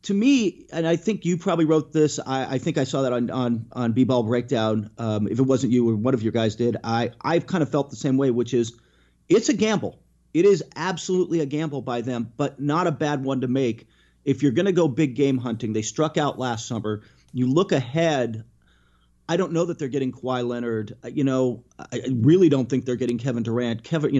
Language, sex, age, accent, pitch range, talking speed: English, male, 40-59, American, 115-155 Hz, 230 wpm